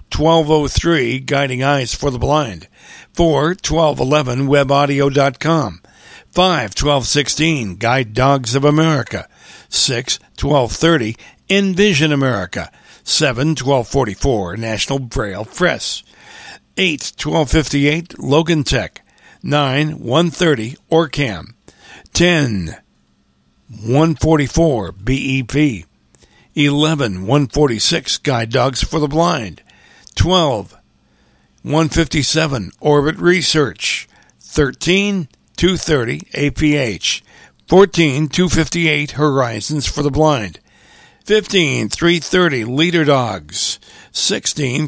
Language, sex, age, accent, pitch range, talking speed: English, male, 60-79, American, 125-160 Hz, 85 wpm